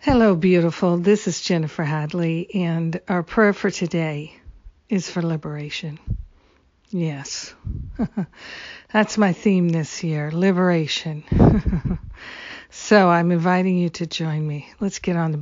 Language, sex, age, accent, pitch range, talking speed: English, female, 50-69, American, 165-190 Hz, 125 wpm